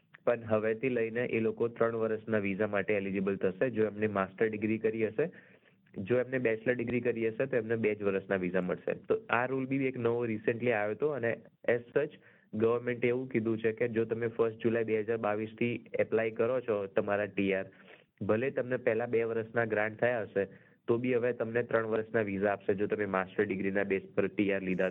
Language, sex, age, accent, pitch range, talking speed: Gujarati, male, 20-39, native, 105-120 Hz, 125 wpm